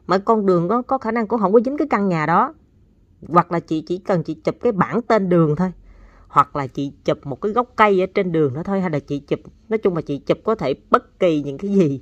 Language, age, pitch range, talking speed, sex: Vietnamese, 30-49, 155-210 Hz, 280 wpm, female